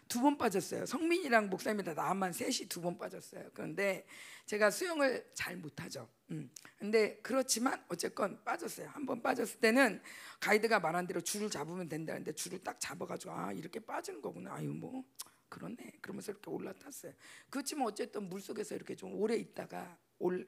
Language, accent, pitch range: Korean, native, 175-245 Hz